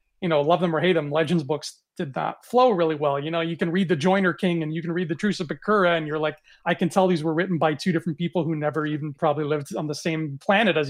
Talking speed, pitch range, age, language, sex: 290 wpm, 155-185 Hz, 30-49, English, male